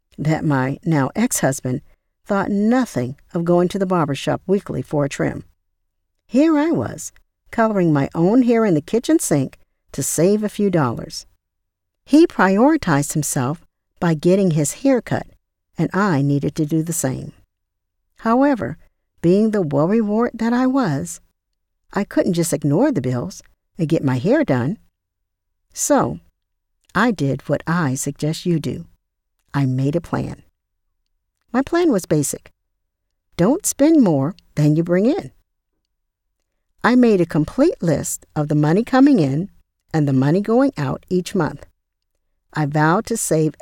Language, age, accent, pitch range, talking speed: English, 50-69, American, 125-205 Hz, 150 wpm